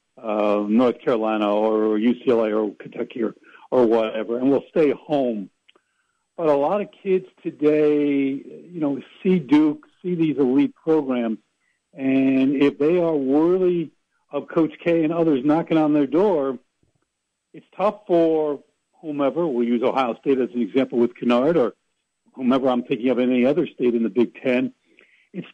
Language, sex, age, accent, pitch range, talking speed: English, male, 60-79, American, 130-175 Hz, 160 wpm